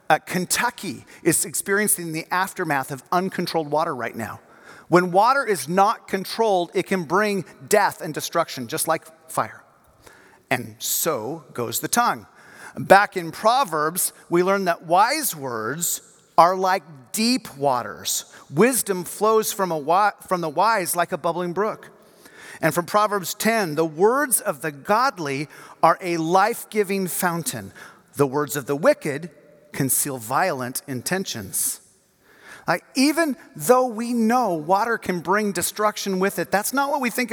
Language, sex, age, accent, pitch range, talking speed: English, male, 40-59, American, 160-210 Hz, 145 wpm